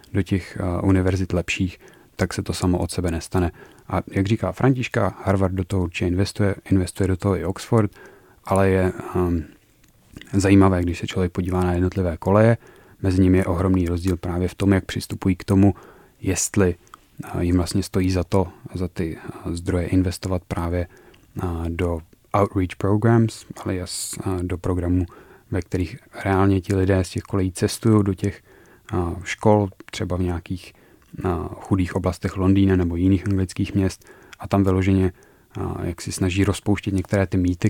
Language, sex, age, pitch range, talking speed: Czech, male, 30-49, 90-100 Hz, 155 wpm